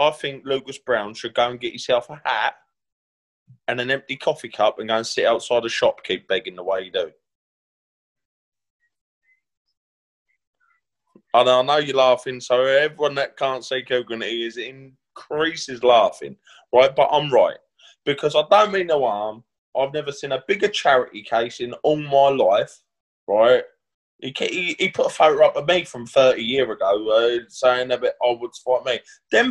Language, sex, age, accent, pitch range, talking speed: English, male, 20-39, British, 125-185 Hz, 175 wpm